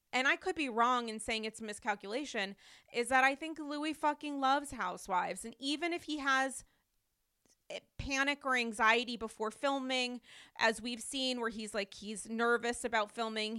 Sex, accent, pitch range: female, American, 220-260 Hz